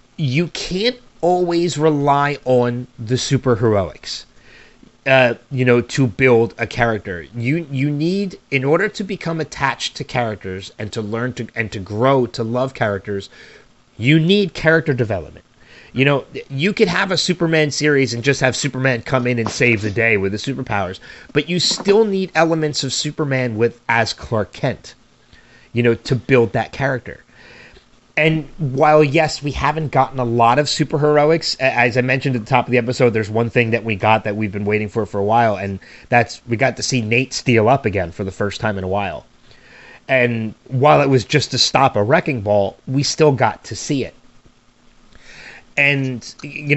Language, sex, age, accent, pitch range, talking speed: English, male, 30-49, American, 115-150 Hz, 185 wpm